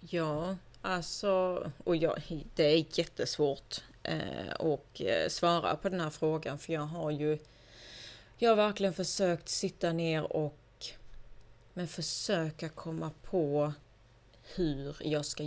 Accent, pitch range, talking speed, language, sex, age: native, 120-175 Hz, 120 wpm, Swedish, female, 30-49